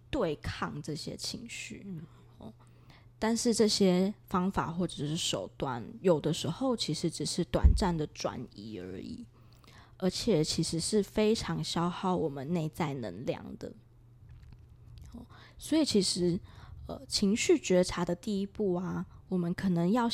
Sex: female